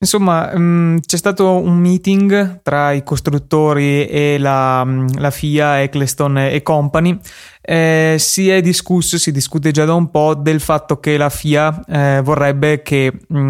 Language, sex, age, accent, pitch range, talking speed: Italian, male, 20-39, native, 135-155 Hz, 145 wpm